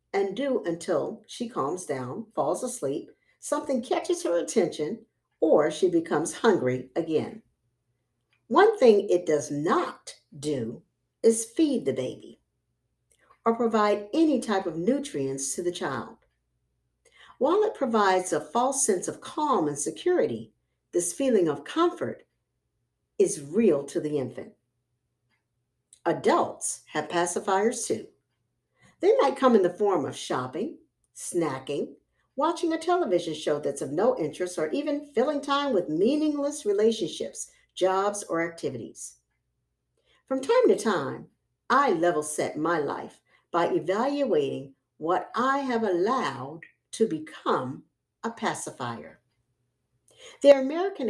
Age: 60-79